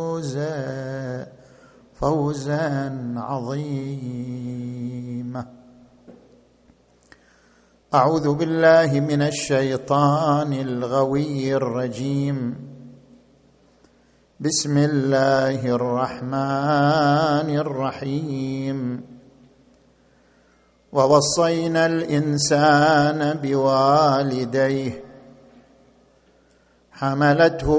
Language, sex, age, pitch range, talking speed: Arabic, male, 50-69, 130-155 Hz, 35 wpm